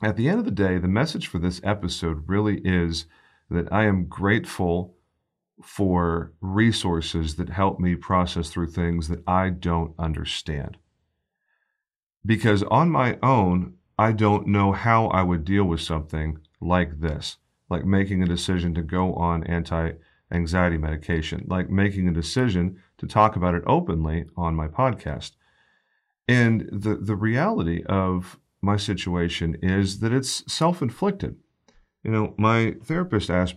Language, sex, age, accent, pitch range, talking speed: English, male, 40-59, American, 85-105 Hz, 145 wpm